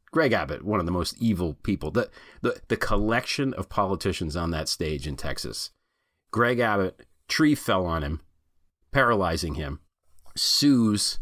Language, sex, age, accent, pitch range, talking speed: English, male, 40-59, American, 80-110 Hz, 145 wpm